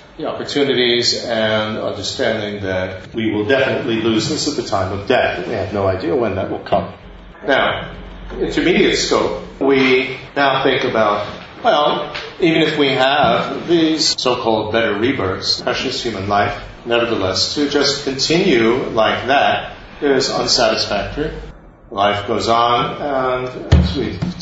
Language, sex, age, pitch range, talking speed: English, male, 40-59, 110-145 Hz, 135 wpm